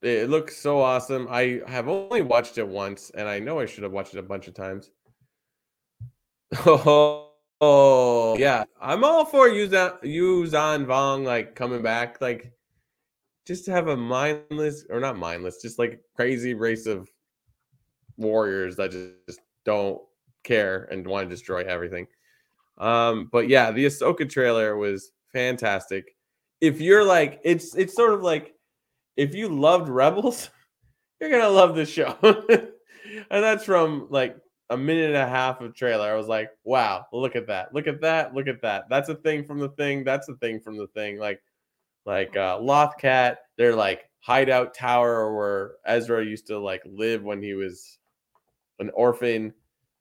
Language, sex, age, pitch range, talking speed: English, male, 20-39, 110-150 Hz, 170 wpm